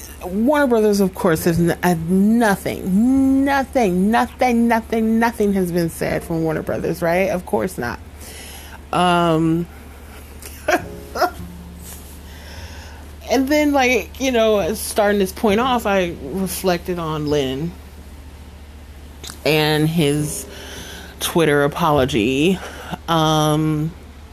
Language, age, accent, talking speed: English, 30-49, American, 100 wpm